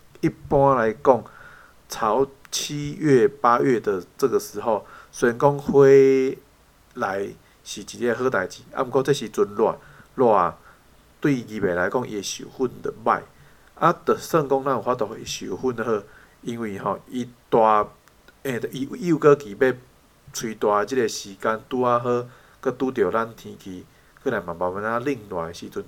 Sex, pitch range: male, 105-140 Hz